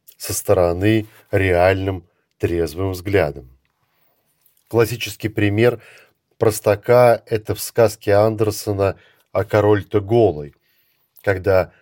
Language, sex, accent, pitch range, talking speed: Russian, male, native, 100-115 Hz, 85 wpm